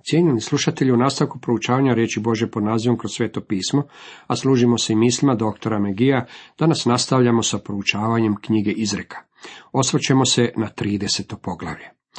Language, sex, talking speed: Croatian, male, 150 wpm